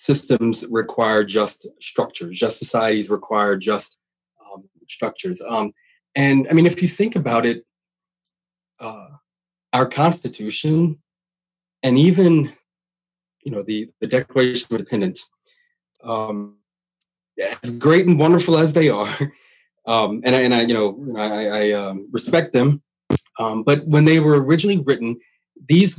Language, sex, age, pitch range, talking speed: English, male, 30-49, 115-165 Hz, 135 wpm